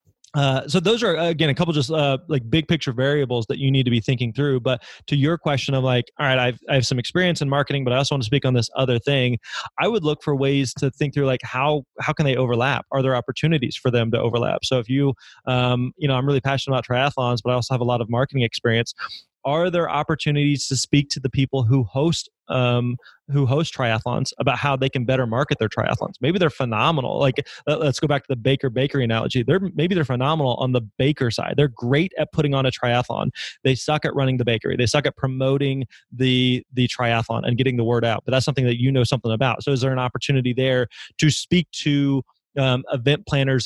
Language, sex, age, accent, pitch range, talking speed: English, male, 20-39, American, 125-145 Hz, 240 wpm